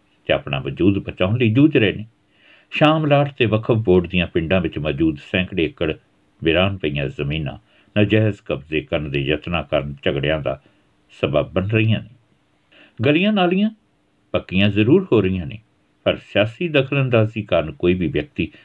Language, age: Punjabi, 60-79